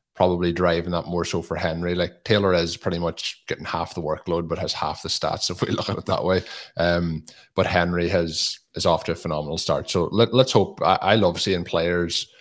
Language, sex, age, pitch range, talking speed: English, male, 30-49, 85-90 Hz, 225 wpm